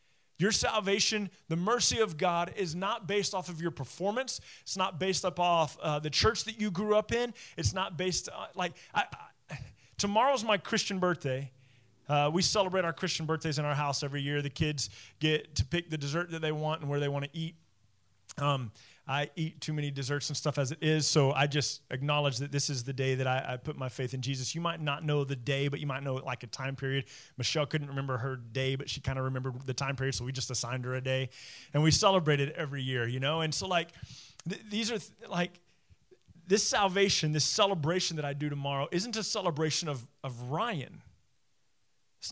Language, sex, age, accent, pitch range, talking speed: English, male, 30-49, American, 135-180 Hz, 225 wpm